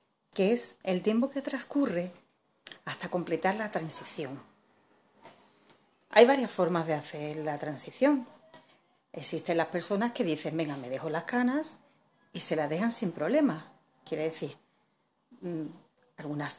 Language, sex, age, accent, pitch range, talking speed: Spanish, female, 40-59, Spanish, 165-240 Hz, 130 wpm